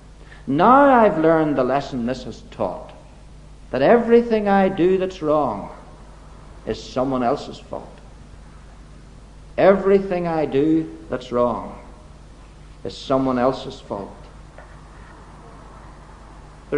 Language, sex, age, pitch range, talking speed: English, male, 60-79, 140-220 Hz, 100 wpm